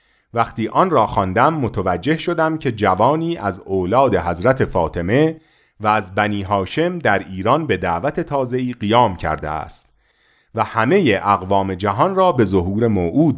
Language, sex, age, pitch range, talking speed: Persian, male, 40-59, 95-155 Hz, 145 wpm